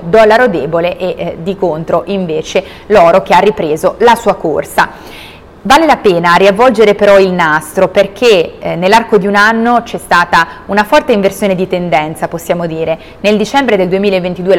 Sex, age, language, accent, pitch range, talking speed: female, 20-39, Italian, native, 175-210 Hz, 165 wpm